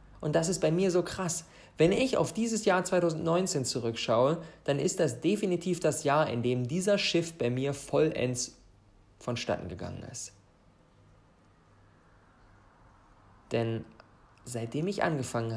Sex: male